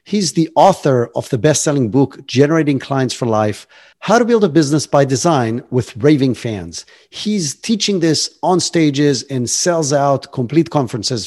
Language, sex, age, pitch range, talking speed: English, male, 50-69, 125-175 Hz, 165 wpm